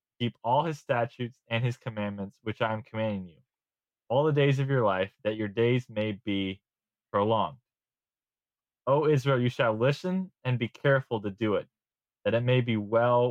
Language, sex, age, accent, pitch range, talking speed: English, male, 20-39, American, 105-130 Hz, 180 wpm